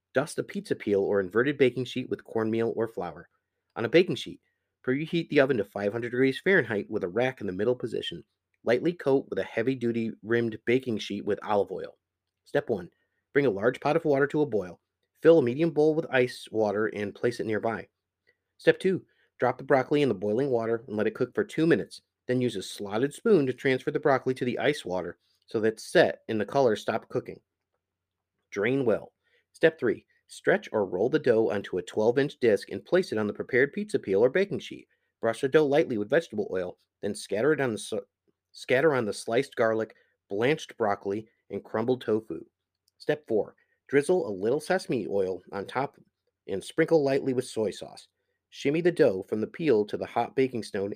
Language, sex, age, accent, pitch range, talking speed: English, male, 30-49, American, 110-150 Hz, 200 wpm